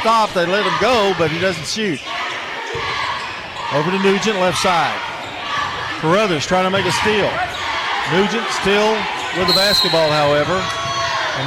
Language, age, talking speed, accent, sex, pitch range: English, 50-69, 135 wpm, American, male, 155-200 Hz